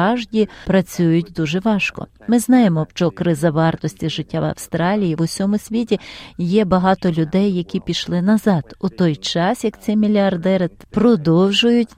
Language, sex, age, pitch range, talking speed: Ukrainian, female, 40-59, 170-215 Hz, 140 wpm